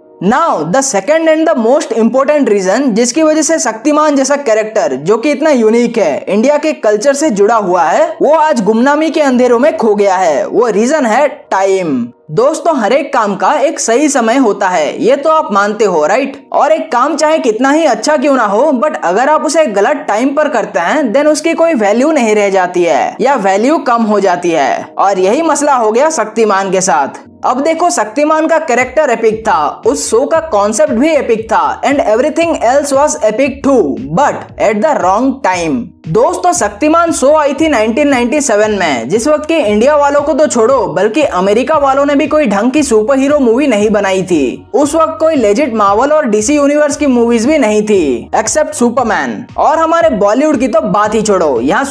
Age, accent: 20-39, native